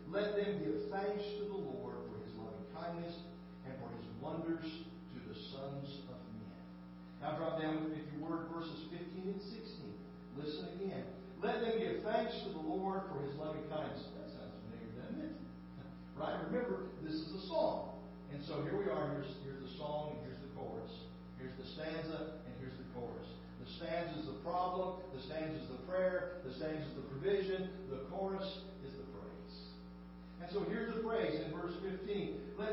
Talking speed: 185 wpm